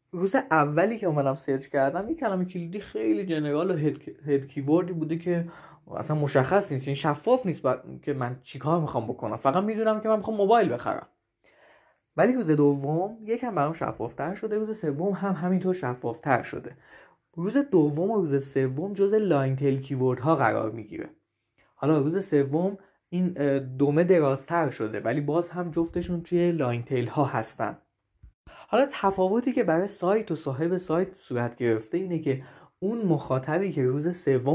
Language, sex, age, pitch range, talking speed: Persian, male, 20-39, 135-180 Hz, 160 wpm